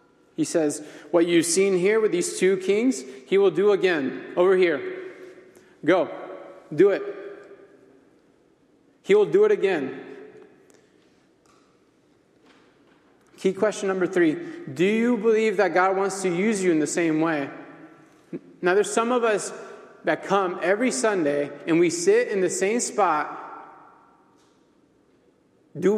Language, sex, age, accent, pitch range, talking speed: English, male, 30-49, American, 155-240 Hz, 135 wpm